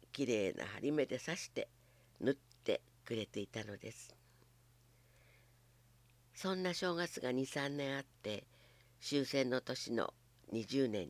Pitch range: 120-135 Hz